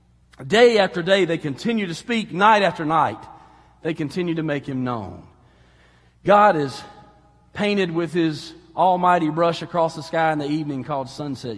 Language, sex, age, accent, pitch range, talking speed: English, male, 40-59, American, 120-165 Hz, 160 wpm